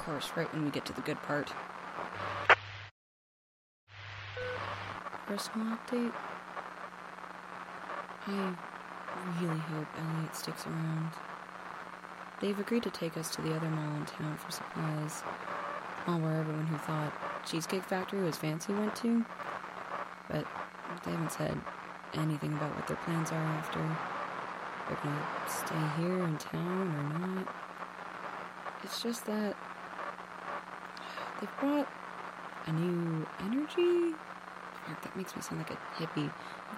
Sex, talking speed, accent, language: female, 125 wpm, American, English